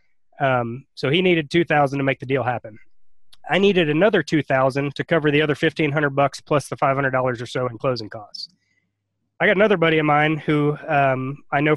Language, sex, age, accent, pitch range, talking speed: English, male, 20-39, American, 135-160 Hz, 195 wpm